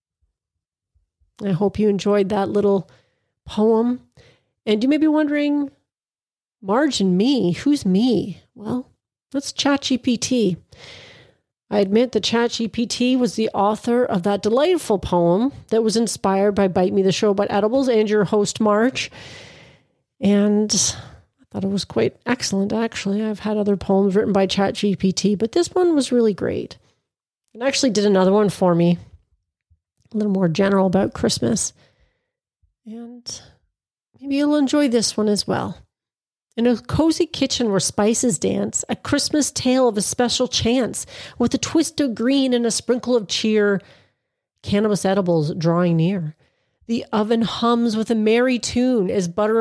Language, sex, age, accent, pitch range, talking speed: English, female, 40-59, American, 195-245 Hz, 150 wpm